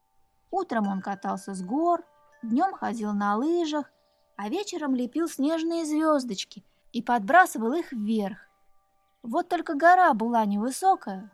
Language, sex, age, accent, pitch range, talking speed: Russian, female, 20-39, native, 215-295 Hz, 120 wpm